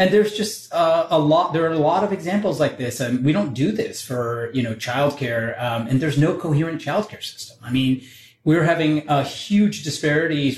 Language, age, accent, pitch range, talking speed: English, 30-49, American, 125-150 Hz, 220 wpm